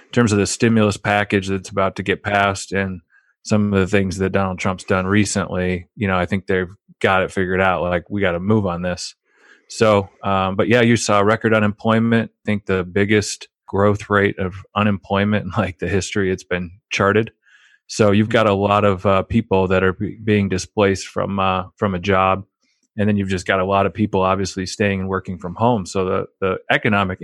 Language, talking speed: English, 215 wpm